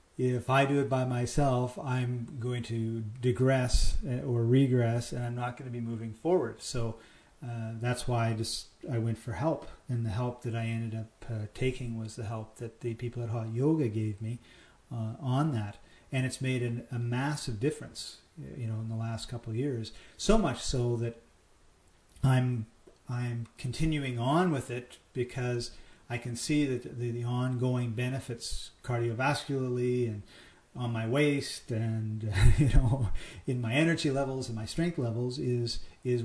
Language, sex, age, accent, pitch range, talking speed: English, male, 40-59, American, 115-130 Hz, 170 wpm